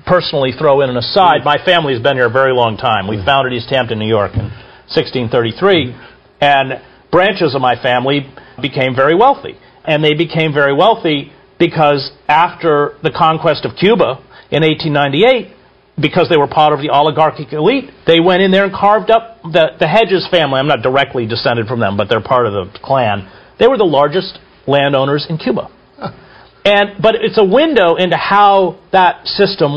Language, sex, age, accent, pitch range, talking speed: English, male, 50-69, American, 135-180 Hz, 180 wpm